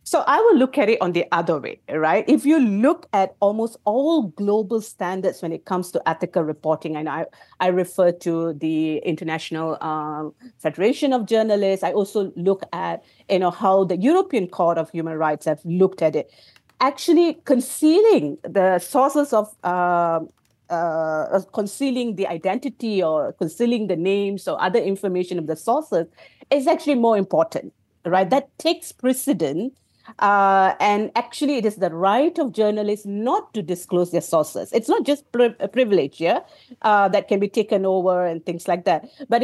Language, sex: English, female